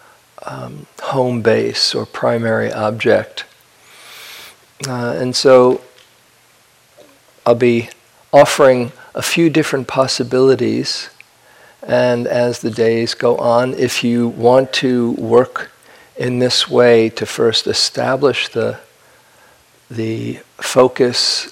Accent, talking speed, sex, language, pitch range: American, 100 wpm, male, English, 115-130 Hz